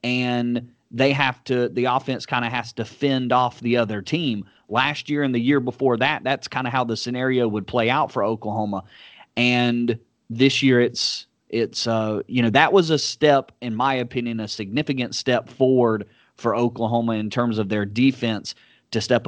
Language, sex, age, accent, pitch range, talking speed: English, male, 30-49, American, 115-135 Hz, 195 wpm